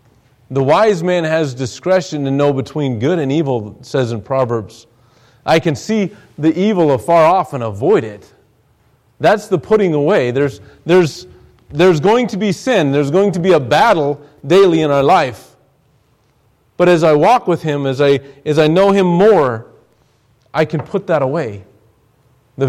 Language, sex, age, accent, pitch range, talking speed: English, male, 40-59, American, 115-145 Hz, 170 wpm